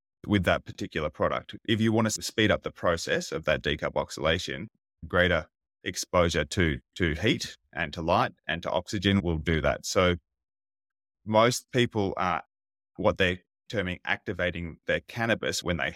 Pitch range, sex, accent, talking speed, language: 80-100 Hz, male, Australian, 160 wpm, English